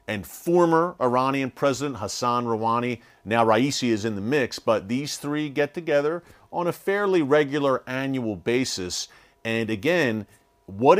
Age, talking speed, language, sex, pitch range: 40-59, 140 wpm, English, male, 115-145 Hz